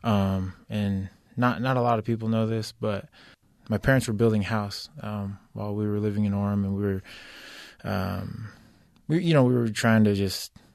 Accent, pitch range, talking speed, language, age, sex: American, 95-110 Hz, 195 wpm, English, 20-39, male